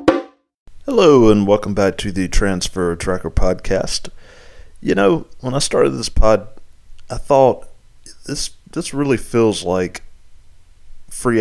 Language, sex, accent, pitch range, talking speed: English, male, American, 90-110 Hz, 125 wpm